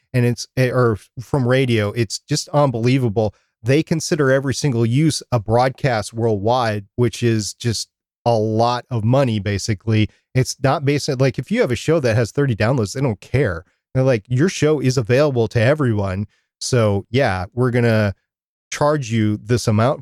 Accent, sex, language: American, male, English